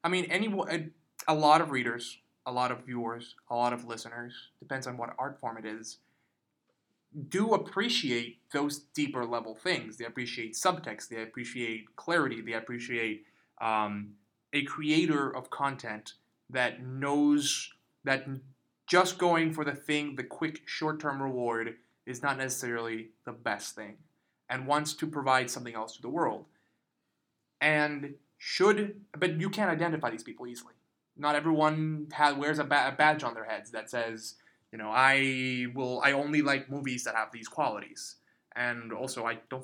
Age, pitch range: 20-39, 115-150 Hz